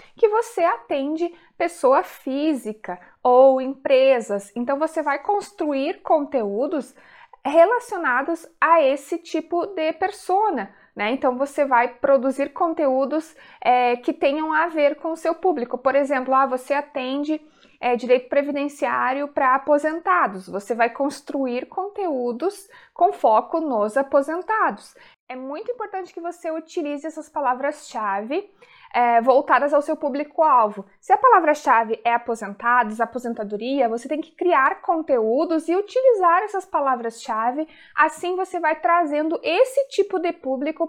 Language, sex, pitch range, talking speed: Portuguese, female, 255-335 Hz, 125 wpm